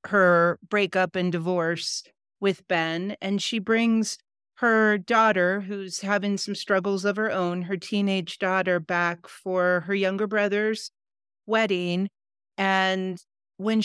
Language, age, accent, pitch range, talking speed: English, 40-59, American, 180-205 Hz, 125 wpm